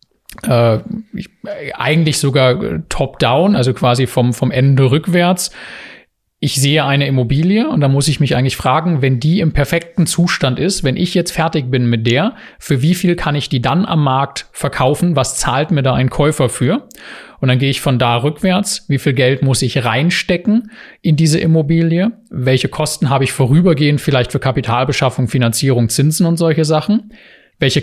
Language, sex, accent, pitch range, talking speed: German, male, German, 130-165 Hz, 175 wpm